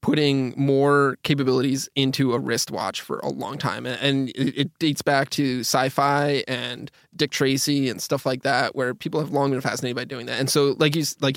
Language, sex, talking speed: English, male, 195 wpm